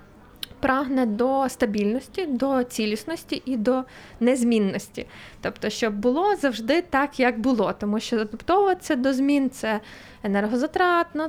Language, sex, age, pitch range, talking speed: Ukrainian, female, 20-39, 220-270 Hz, 115 wpm